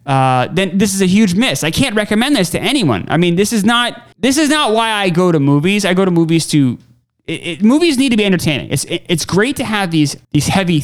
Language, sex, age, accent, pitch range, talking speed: English, male, 20-39, American, 135-195 Hz, 260 wpm